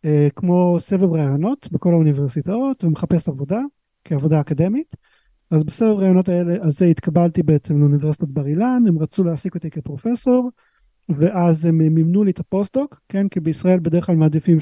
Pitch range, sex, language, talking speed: 155-195 Hz, male, Hebrew, 150 wpm